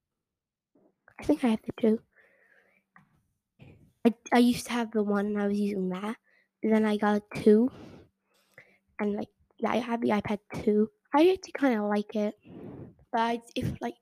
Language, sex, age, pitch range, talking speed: English, female, 10-29, 210-235 Hz, 175 wpm